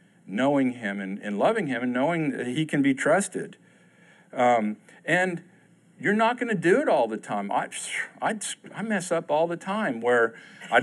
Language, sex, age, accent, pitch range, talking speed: English, male, 50-69, American, 125-185 Hz, 200 wpm